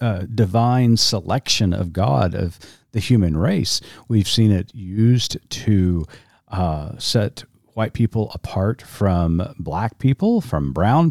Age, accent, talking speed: 50-69, American, 130 wpm